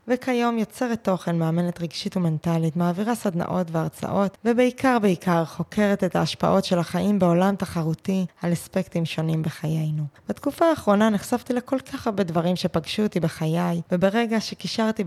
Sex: female